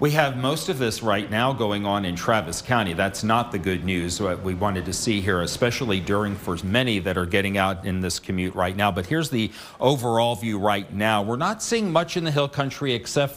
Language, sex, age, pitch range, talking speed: English, male, 50-69, 110-140 Hz, 235 wpm